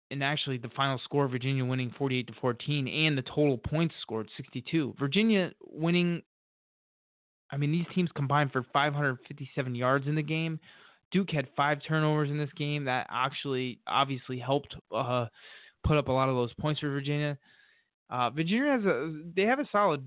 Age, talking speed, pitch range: 20-39, 175 wpm, 125-155 Hz